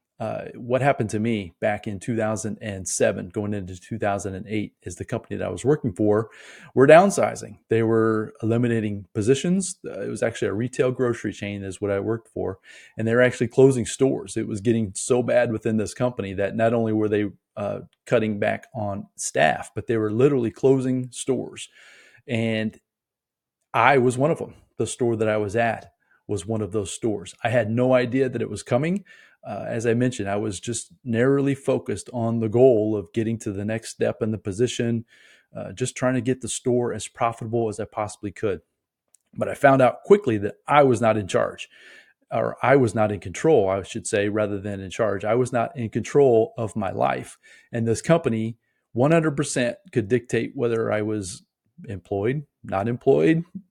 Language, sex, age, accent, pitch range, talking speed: English, male, 30-49, American, 105-125 Hz, 190 wpm